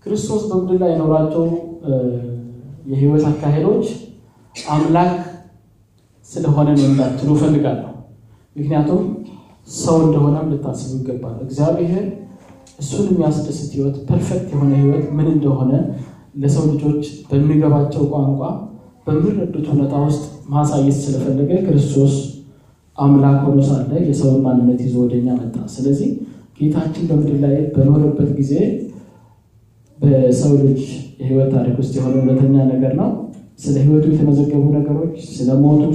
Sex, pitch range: male, 135-170 Hz